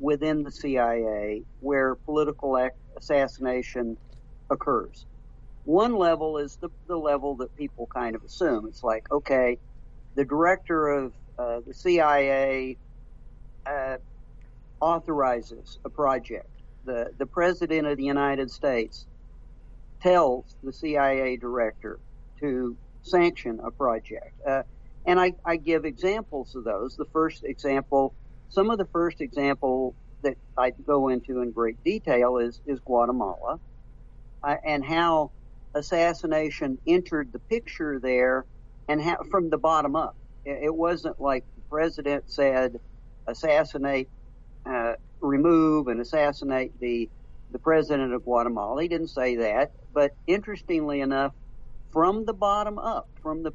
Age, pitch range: 60-79, 125-155 Hz